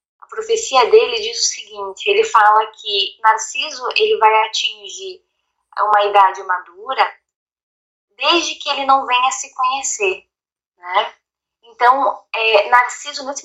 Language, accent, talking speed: Portuguese, Brazilian, 120 wpm